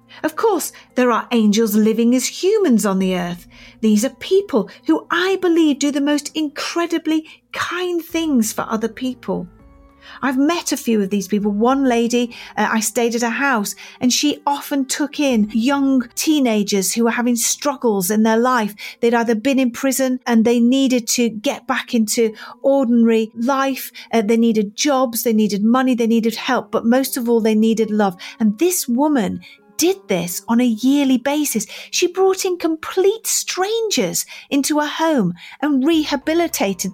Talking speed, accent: 170 wpm, British